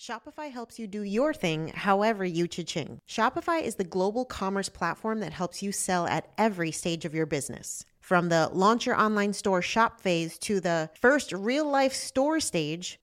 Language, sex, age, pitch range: English, female, 30-49, 185-260 Hz